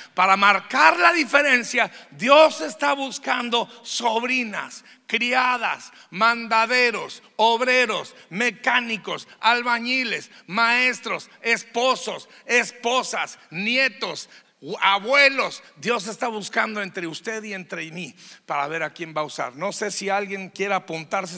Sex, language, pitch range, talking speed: male, Spanish, 185-245 Hz, 110 wpm